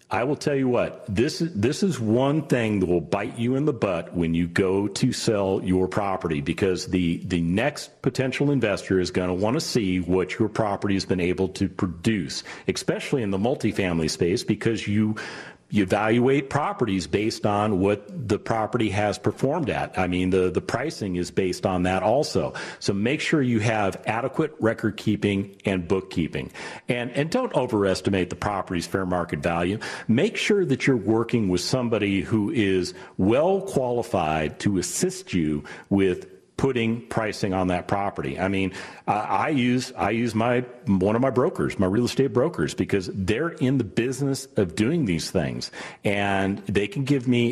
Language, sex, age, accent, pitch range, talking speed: English, male, 40-59, American, 95-125 Hz, 175 wpm